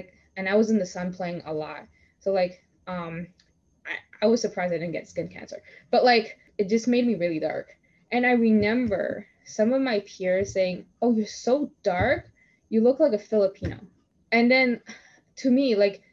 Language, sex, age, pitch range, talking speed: English, female, 10-29, 180-220 Hz, 190 wpm